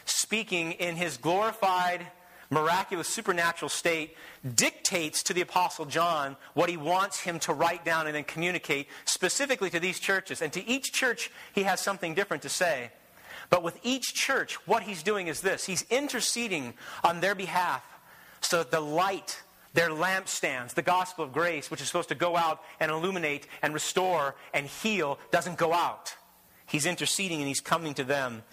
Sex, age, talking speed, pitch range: male, 40-59, 175 wpm, 155-190 Hz